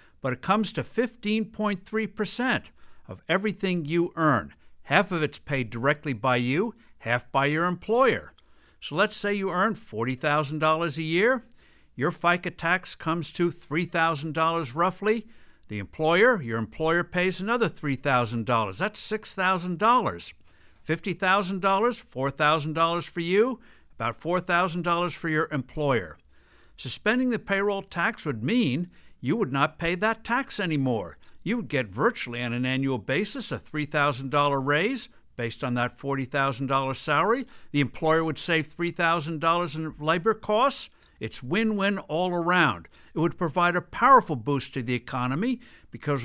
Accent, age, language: American, 60-79, English